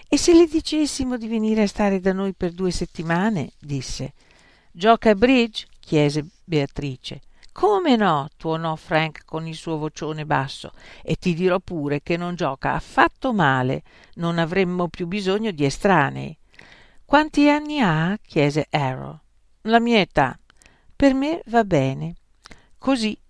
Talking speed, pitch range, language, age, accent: 145 wpm, 145-190 Hz, Italian, 50-69, native